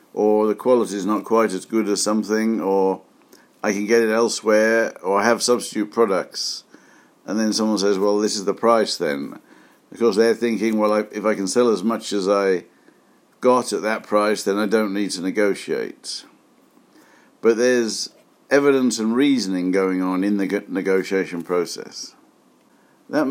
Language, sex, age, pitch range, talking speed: English, male, 60-79, 100-115 Hz, 165 wpm